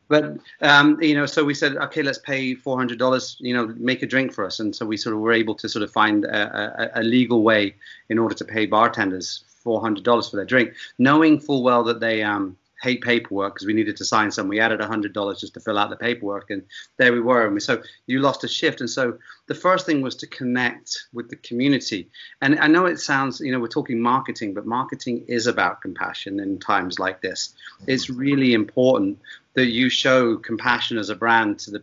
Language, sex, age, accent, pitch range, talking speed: English, male, 30-49, British, 110-130 Hz, 220 wpm